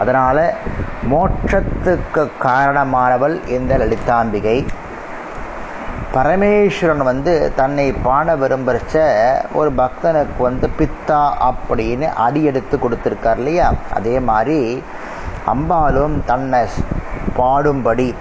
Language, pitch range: Tamil, 125-155 Hz